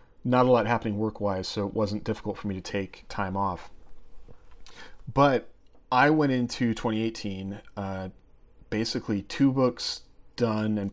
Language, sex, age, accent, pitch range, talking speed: English, male, 40-59, American, 100-120 Hz, 145 wpm